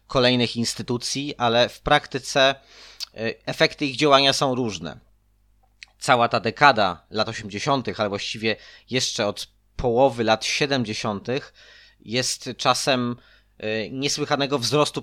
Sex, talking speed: male, 105 wpm